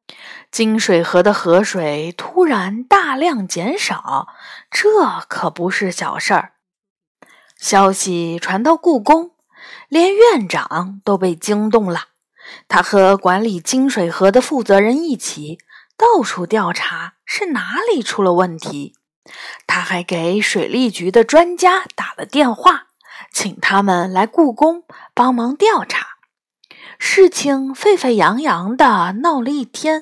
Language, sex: Chinese, female